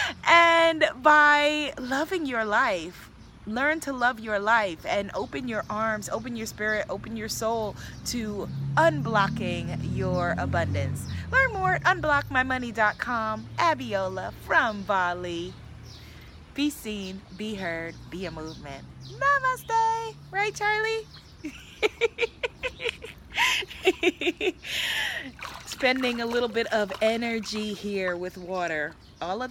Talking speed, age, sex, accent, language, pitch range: 105 wpm, 20-39, female, American, English, 185-275 Hz